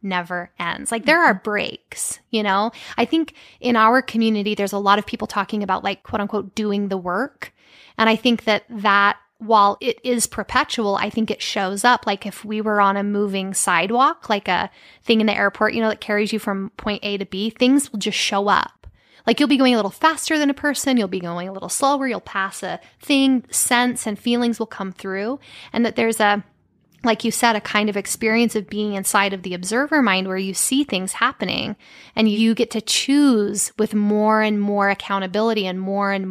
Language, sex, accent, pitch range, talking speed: English, female, American, 195-235 Hz, 215 wpm